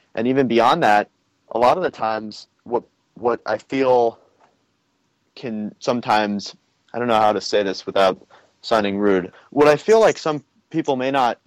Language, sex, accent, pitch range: English, male, American, 105-130 Hz